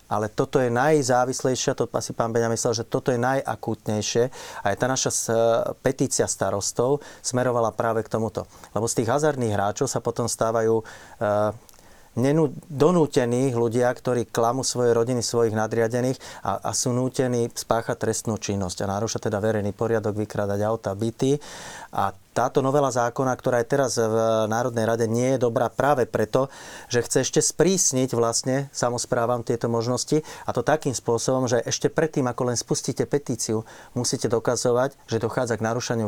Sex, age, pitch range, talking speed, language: male, 30-49, 110-135 Hz, 155 wpm, Slovak